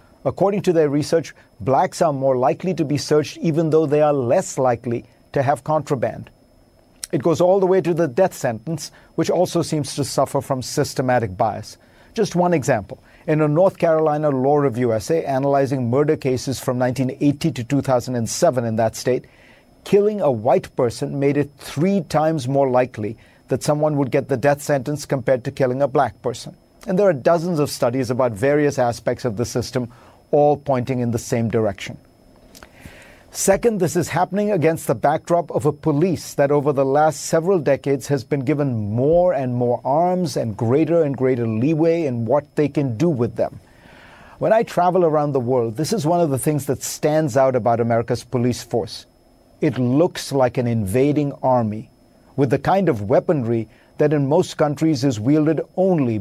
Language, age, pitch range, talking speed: English, 50-69, 125-160 Hz, 180 wpm